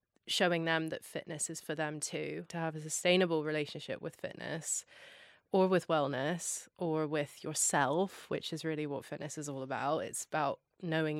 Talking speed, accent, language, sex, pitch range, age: 170 wpm, British, English, female, 150-170 Hz, 20-39